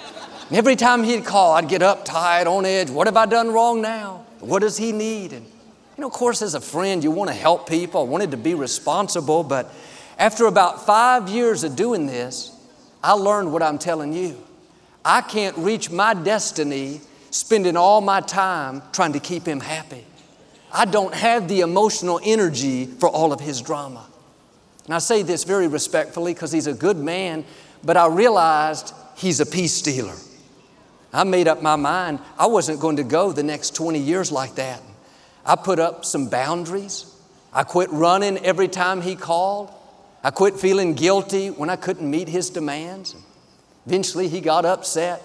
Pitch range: 155-195 Hz